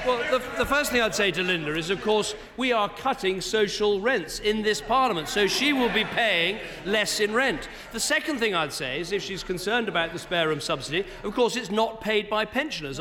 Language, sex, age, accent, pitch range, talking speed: English, male, 40-59, British, 210-275 Hz, 225 wpm